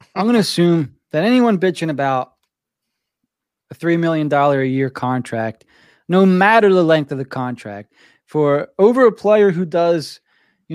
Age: 20-39